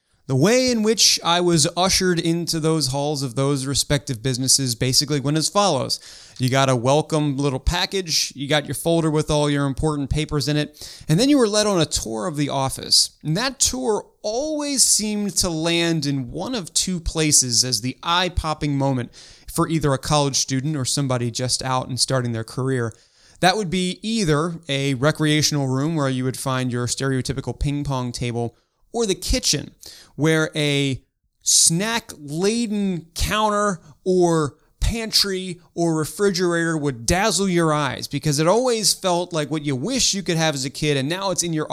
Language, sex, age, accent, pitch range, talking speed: English, male, 30-49, American, 135-180 Hz, 180 wpm